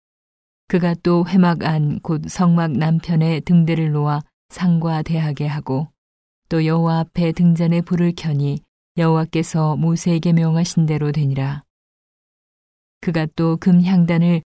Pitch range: 155-175 Hz